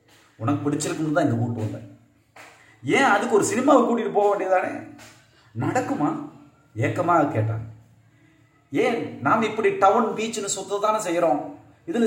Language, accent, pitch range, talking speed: Tamil, native, 115-190 Hz, 120 wpm